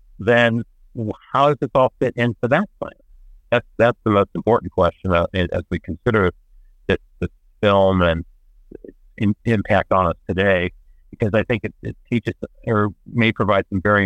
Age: 60-79